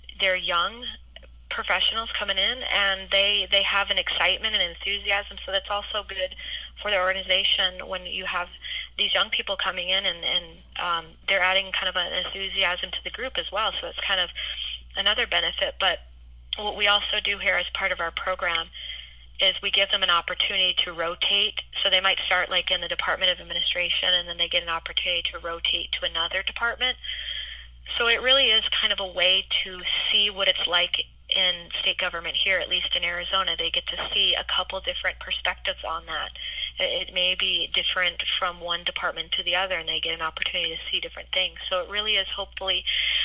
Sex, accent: female, American